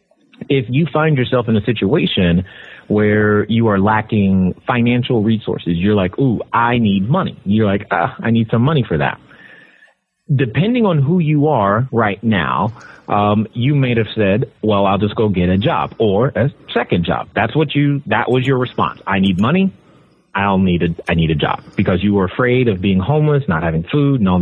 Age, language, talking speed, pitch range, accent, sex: 30-49, English, 195 wpm, 100-135 Hz, American, male